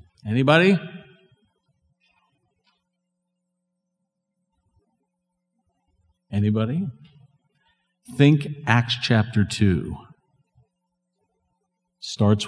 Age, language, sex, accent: 50-69, English, male, American